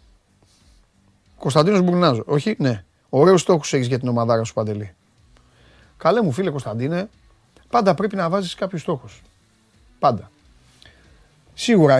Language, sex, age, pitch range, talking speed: Greek, male, 30-49, 100-160 Hz, 120 wpm